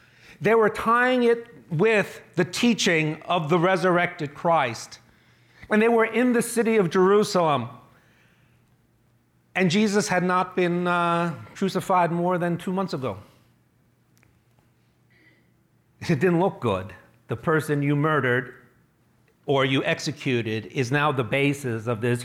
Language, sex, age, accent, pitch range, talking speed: English, male, 40-59, American, 135-180 Hz, 130 wpm